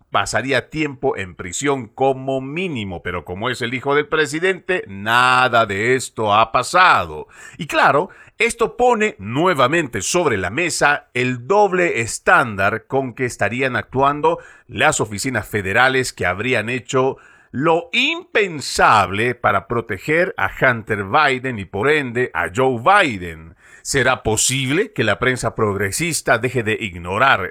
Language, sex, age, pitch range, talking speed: Spanish, male, 50-69, 105-150 Hz, 135 wpm